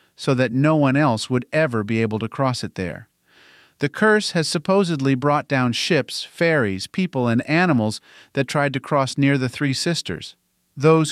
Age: 40-59